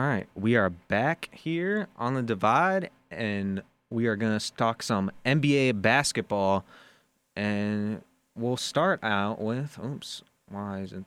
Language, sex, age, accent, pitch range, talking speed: English, male, 20-39, American, 100-130 Hz, 140 wpm